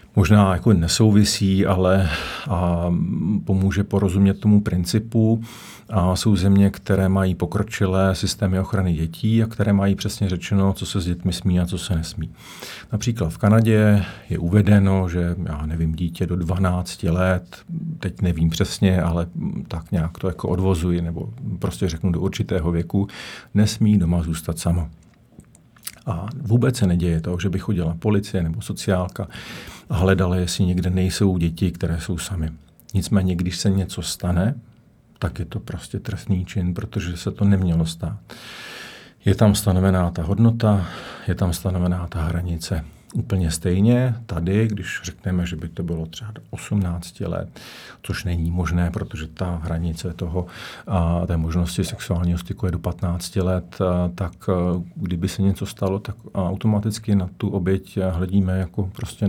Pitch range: 85-100 Hz